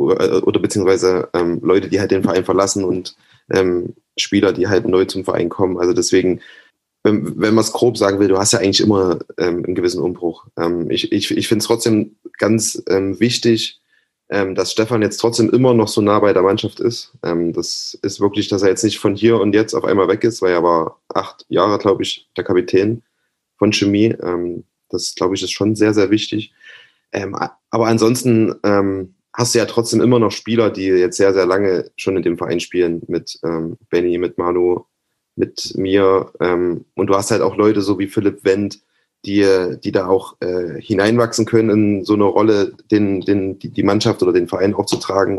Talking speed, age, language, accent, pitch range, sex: 200 wpm, 20-39, German, German, 95-110 Hz, male